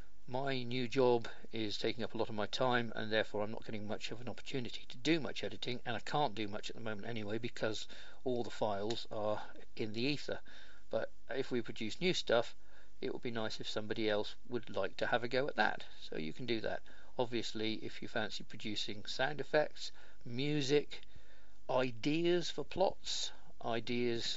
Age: 50-69